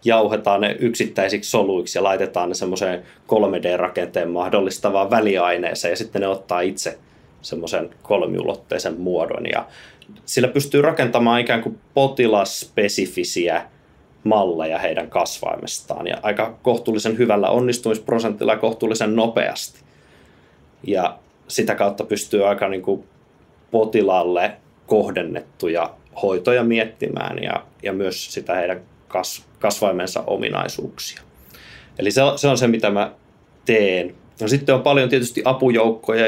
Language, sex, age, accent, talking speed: Finnish, male, 20-39, native, 110 wpm